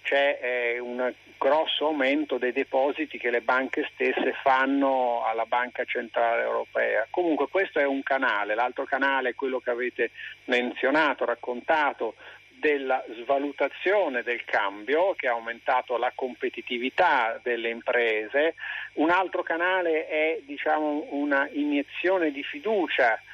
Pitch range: 125-155 Hz